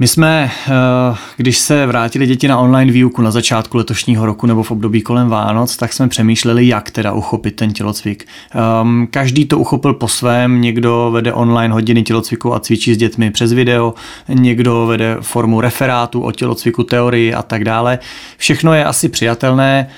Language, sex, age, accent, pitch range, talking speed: Czech, male, 30-49, native, 110-125 Hz, 170 wpm